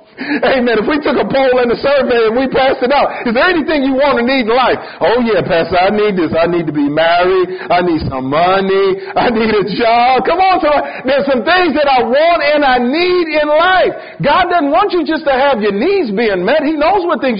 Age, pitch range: 50-69, 185-300 Hz